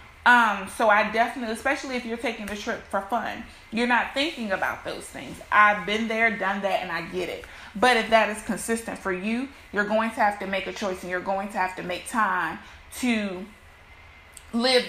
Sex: female